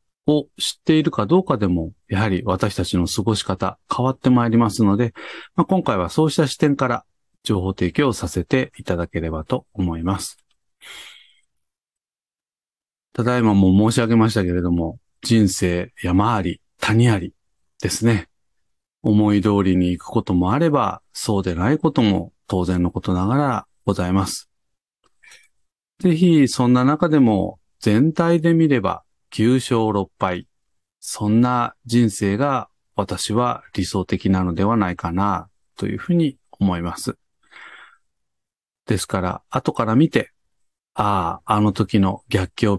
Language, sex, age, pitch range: Japanese, male, 40-59, 95-130 Hz